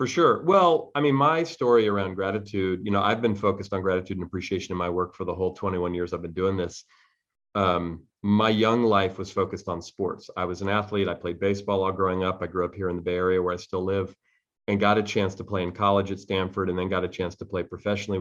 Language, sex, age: English, male, 30-49